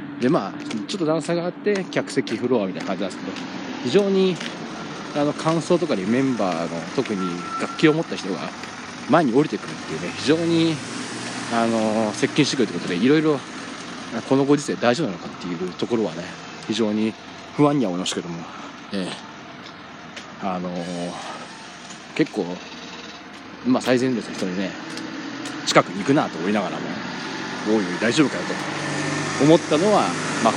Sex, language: male, Japanese